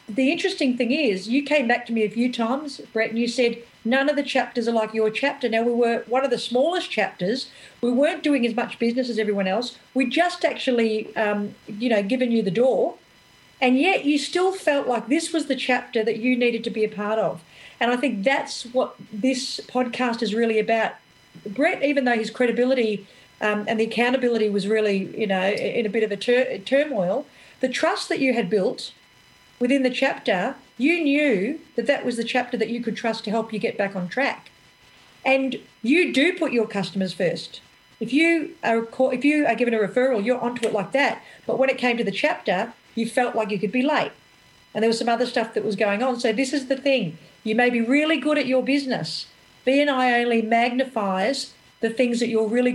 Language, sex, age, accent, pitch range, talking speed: English, female, 40-59, Australian, 220-265 Hz, 220 wpm